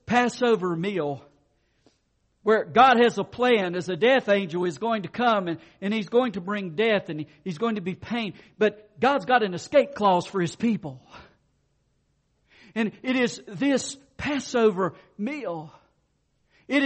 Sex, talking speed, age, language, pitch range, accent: male, 155 wpm, 50-69, English, 180-260 Hz, American